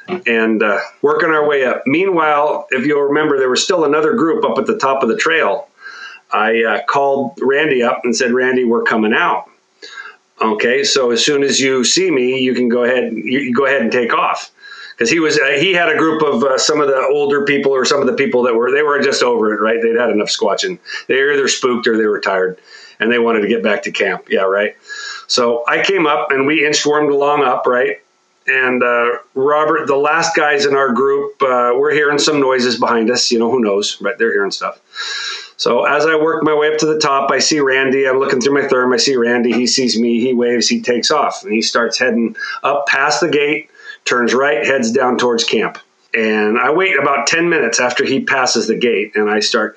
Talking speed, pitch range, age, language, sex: 230 wpm, 120-165 Hz, 40-59, English, male